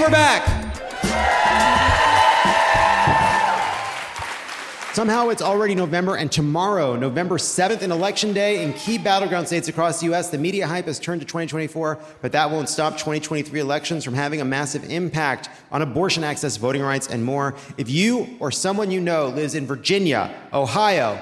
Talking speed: 155 wpm